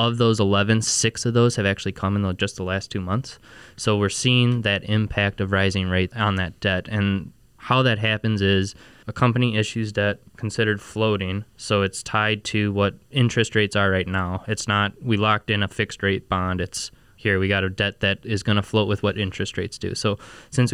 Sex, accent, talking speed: male, American, 215 wpm